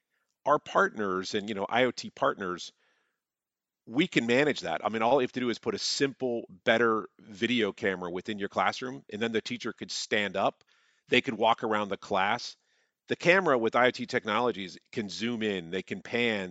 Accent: American